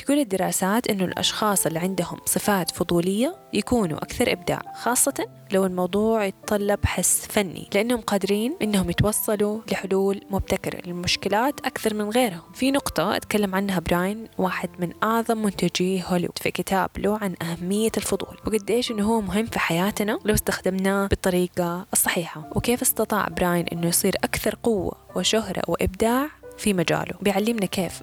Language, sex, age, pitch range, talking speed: Arabic, female, 10-29, 180-220 Hz, 140 wpm